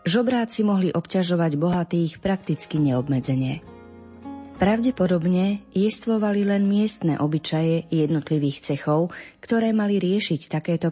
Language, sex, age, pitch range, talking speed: Slovak, female, 30-49, 150-195 Hz, 95 wpm